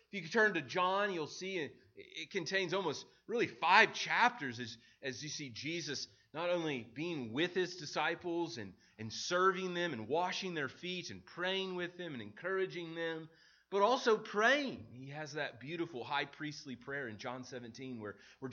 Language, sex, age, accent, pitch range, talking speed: English, male, 30-49, American, 120-180 Hz, 180 wpm